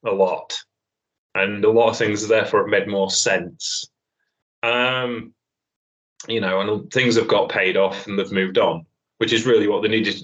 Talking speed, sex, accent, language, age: 190 wpm, male, British, English, 20-39